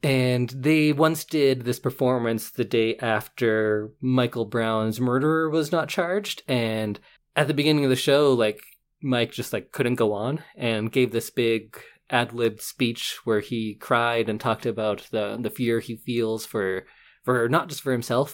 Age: 20-39